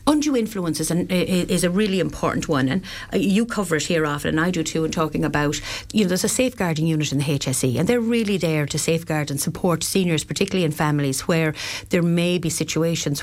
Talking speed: 220 wpm